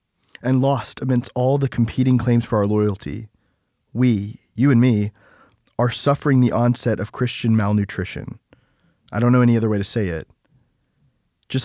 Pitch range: 110-130 Hz